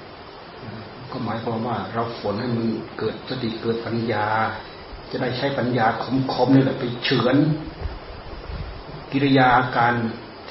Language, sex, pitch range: Thai, male, 115-135 Hz